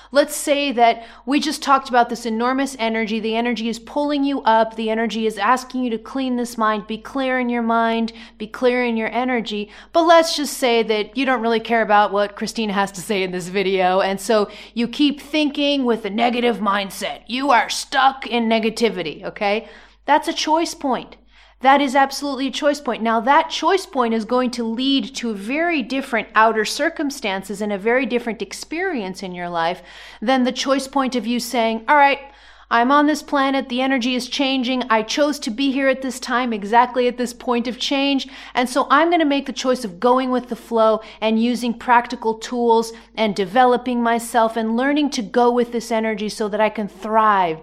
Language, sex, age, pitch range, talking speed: English, female, 30-49, 220-265 Hz, 205 wpm